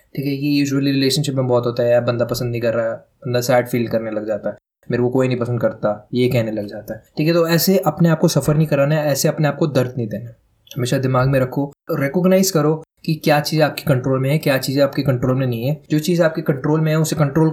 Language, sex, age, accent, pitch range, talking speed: Hindi, male, 20-39, native, 125-155 Hz, 270 wpm